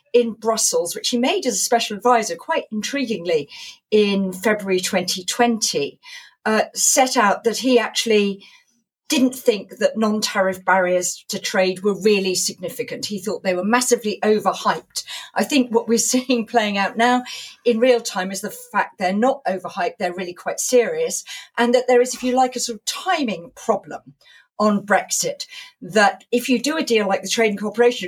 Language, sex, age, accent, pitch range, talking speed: English, female, 40-59, British, 195-245 Hz, 175 wpm